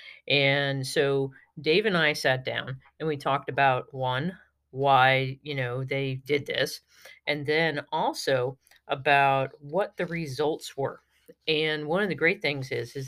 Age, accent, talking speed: 40-59, American, 155 wpm